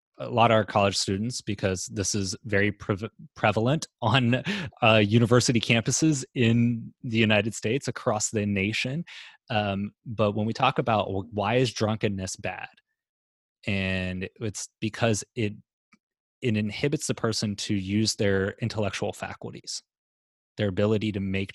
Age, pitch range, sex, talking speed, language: 20-39, 100-120 Hz, male, 135 wpm, English